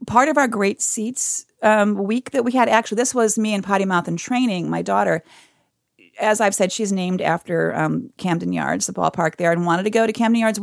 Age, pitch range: 40-59, 185-235 Hz